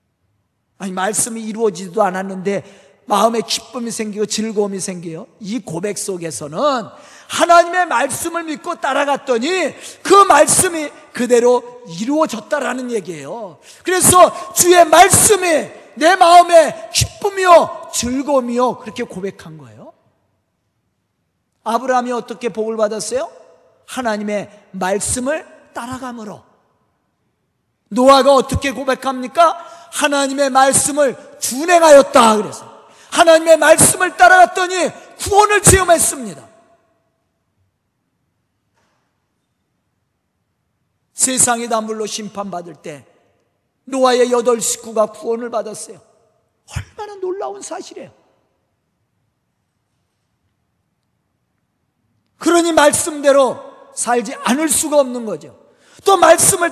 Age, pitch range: 40-59, 210-320 Hz